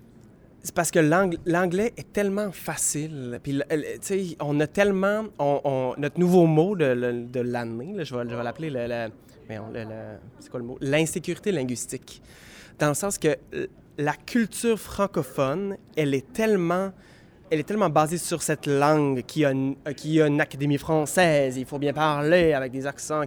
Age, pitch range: 20-39, 130-180 Hz